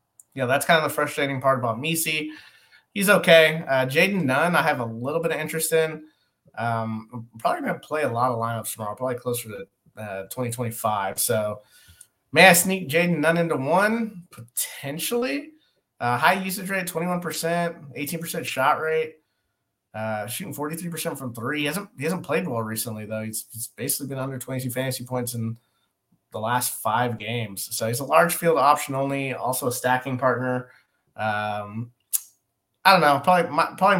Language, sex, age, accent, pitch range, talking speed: English, male, 30-49, American, 115-160 Hz, 175 wpm